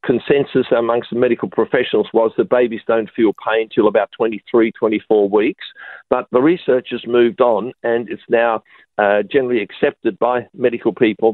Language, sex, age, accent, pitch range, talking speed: English, male, 50-69, Australian, 110-125 Hz, 165 wpm